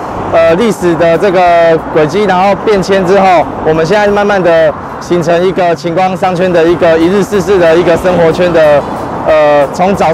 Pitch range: 165-200 Hz